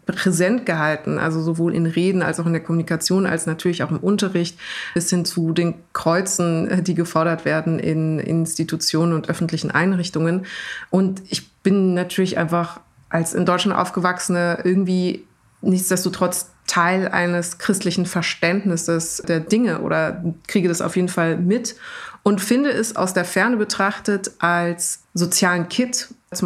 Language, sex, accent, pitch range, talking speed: German, female, German, 165-190 Hz, 145 wpm